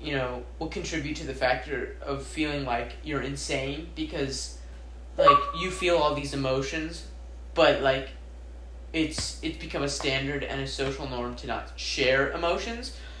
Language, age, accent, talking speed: English, 10-29, American, 155 wpm